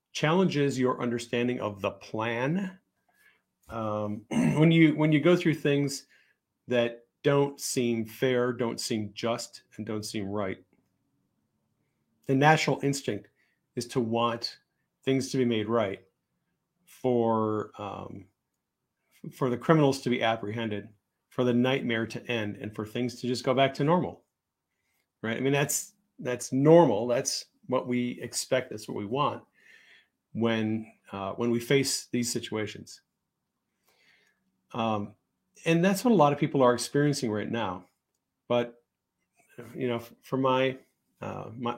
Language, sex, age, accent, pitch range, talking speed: English, male, 40-59, American, 110-140 Hz, 140 wpm